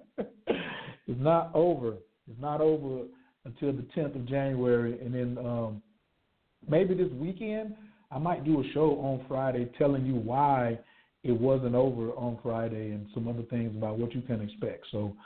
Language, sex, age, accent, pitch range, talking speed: English, male, 50-69, American, 125-160 Hz, 165 wpm